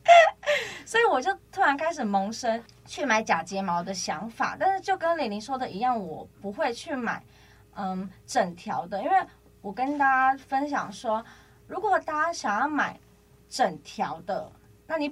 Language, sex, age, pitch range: Chinese, female, 20-39, 200-275 Hz